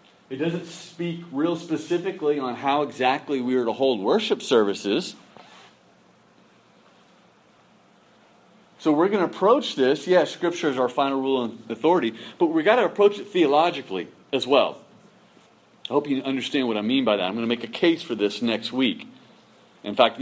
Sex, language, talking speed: male, English, 170 wpm